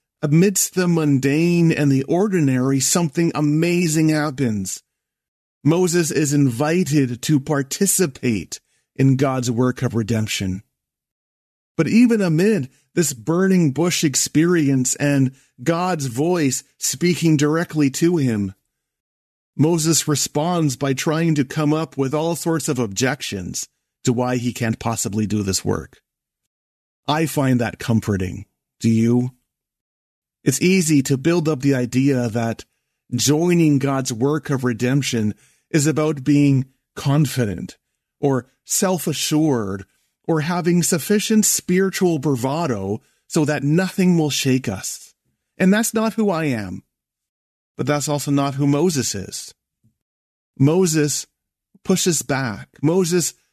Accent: American